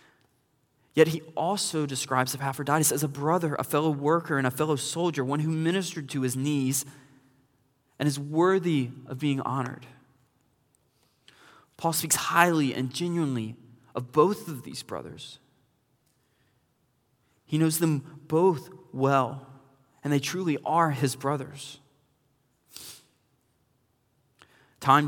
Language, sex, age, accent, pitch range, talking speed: English, male, 20-39, American, 120-145 Hz, 115 wpm